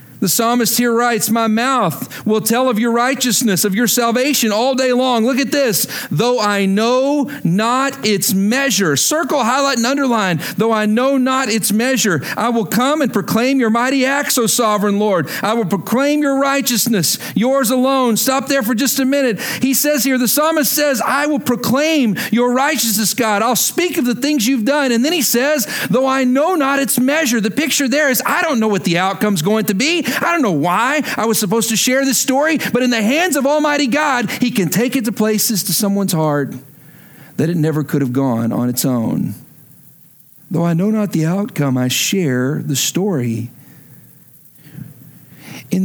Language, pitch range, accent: English, 165-260 Hz, American